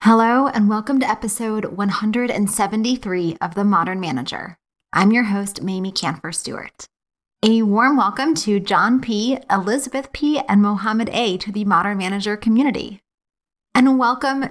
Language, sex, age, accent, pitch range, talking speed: English, female, 20-39, American, 195-235 Hz, 135 wpm